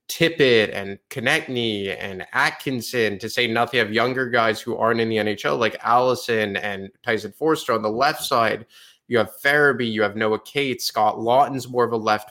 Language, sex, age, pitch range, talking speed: English, male, 20-39, 110-135 Hz, 185 wpm